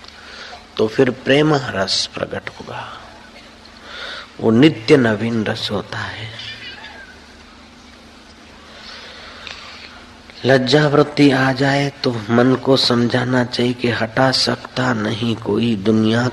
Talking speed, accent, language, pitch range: 100 wpm, native, Hindi, 105-125 Hz